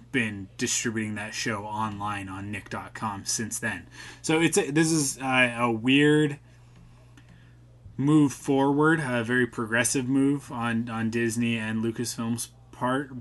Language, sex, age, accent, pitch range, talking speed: English, male, 20-39, American, 105-125 Hz, 130 wpm